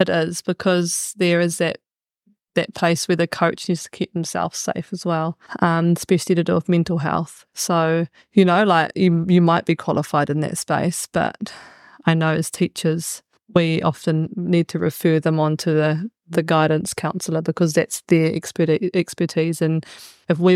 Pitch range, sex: 160-175 Hz, female